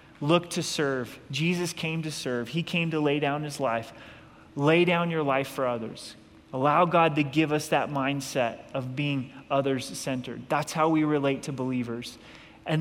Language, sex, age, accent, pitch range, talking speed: English, male, 30-49, American, 125-150 Hz, 175 wpm